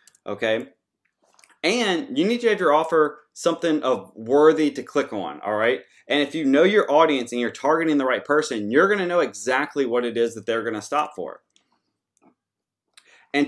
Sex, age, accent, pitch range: male, 30-49, American, 120-165 Hz